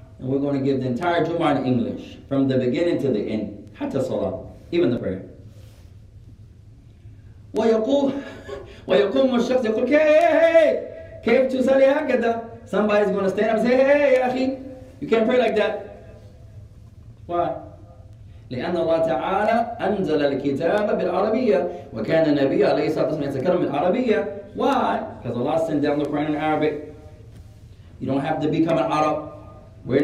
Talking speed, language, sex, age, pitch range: 110 wpm, English, male, 30-49, 115-170 Hz